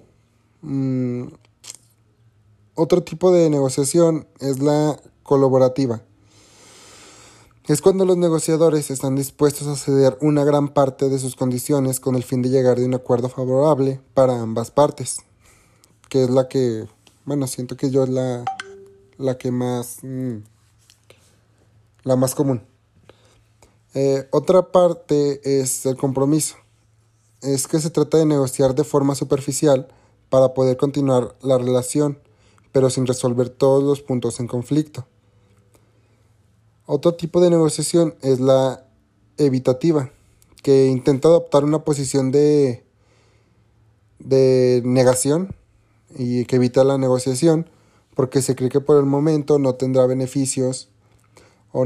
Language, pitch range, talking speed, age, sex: Spanish, 115-145 Hz, 125 wpm, 30-49, male